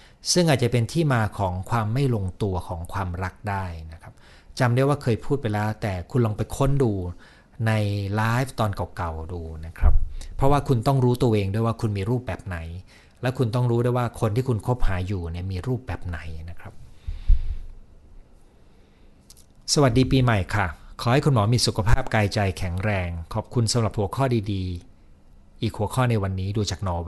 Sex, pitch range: male, 90-120 Hz